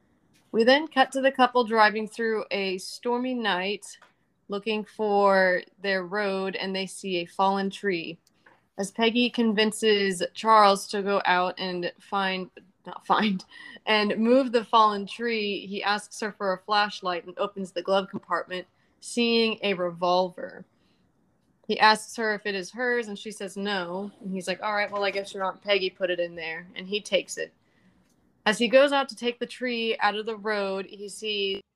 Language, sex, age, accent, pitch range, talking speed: English, female, 20-39, American, 190-225 Hz, 180 wpm